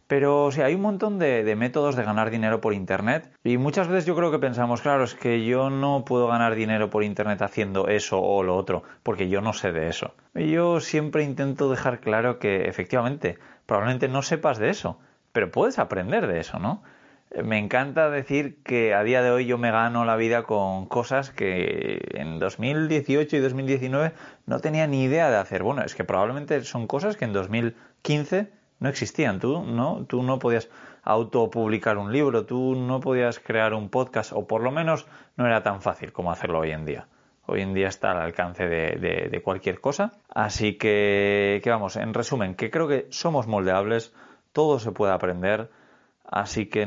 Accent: Spanish